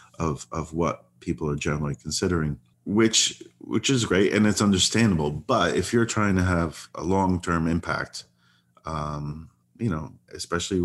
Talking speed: 150 wpm